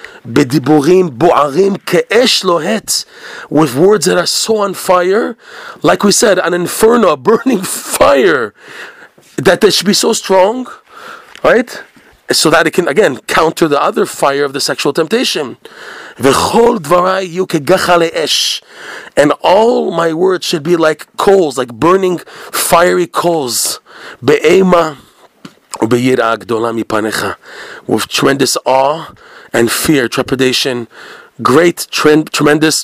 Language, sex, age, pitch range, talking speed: English, male, 40-59, 135-200 Hz, 100 wpm